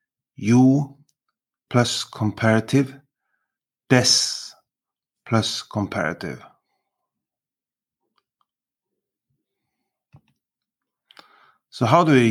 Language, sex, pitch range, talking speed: English, male, 105-130 Hz, 50 wpm